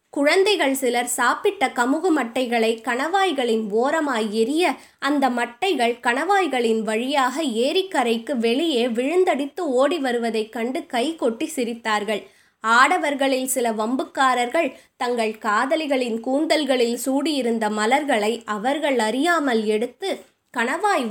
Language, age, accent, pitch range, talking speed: Tamil, 20-39, native, 230-295 Hz, 95 wpm